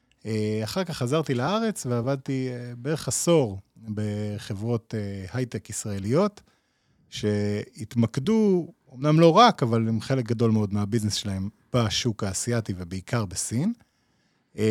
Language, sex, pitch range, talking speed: Hebrew, male, 105-135 Hz, 100 wpm